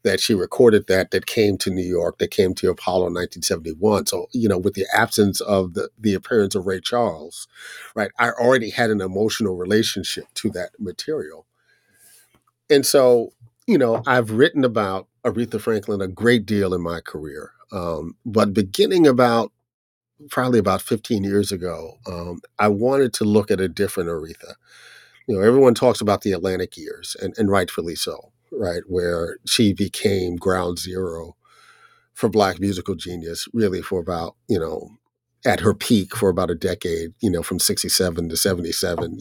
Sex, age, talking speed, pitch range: male, 50-69, 170 wpm, 90-115 Hz